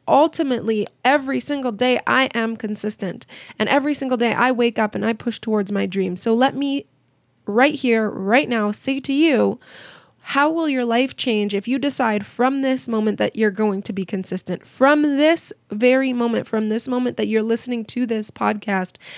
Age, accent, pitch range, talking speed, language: 20-39, American, 220-280 Hz, 190 wpm, English